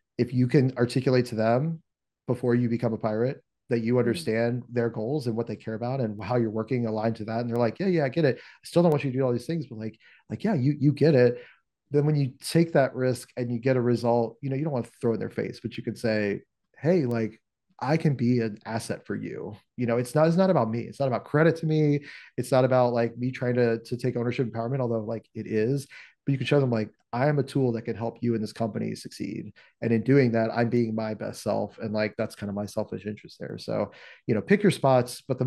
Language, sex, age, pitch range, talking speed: English, male, 30-49, 115-130 Hz, 275 wpm